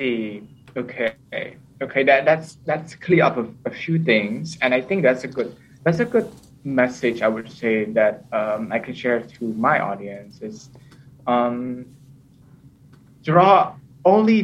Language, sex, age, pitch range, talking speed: English, male, 20-39, 120-160 Hz, 150 wpm